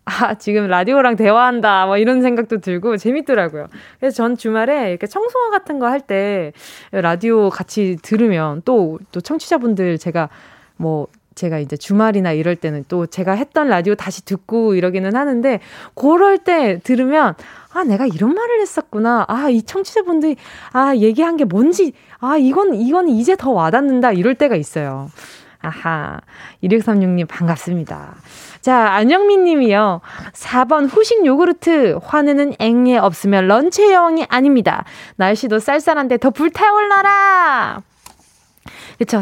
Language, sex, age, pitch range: Korean, female, 20-39, 195-300 Hz